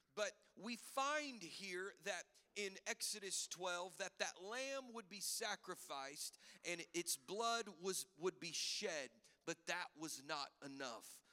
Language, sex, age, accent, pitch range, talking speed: English, male, 40-59, American, 160-210 Hz, 140 wpm